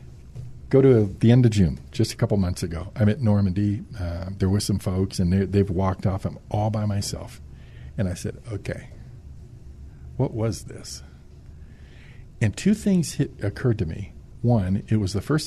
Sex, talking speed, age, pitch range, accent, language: male, 175 wpm, 50-69, 95-120 Hz, American, English